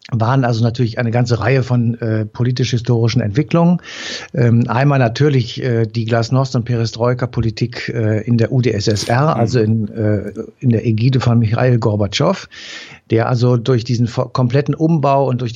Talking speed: 150 wpm